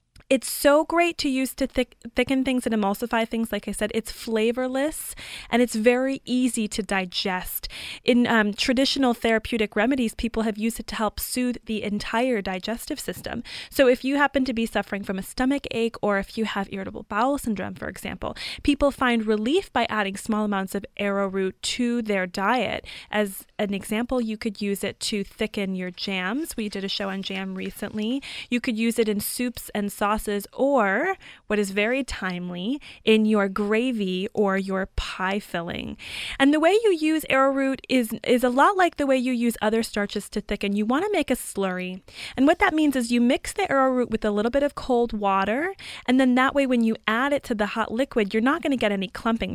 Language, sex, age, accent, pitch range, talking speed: English, female, 20-39, American, 210-265 Hz, 205 wpm